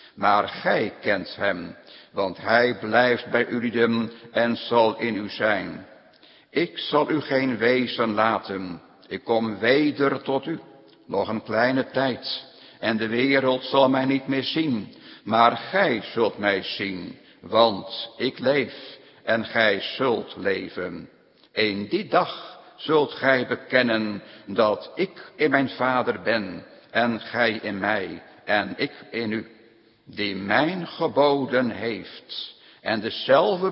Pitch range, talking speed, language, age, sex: 110-135 Hz, 135 wpm, Dutch, 60-79, male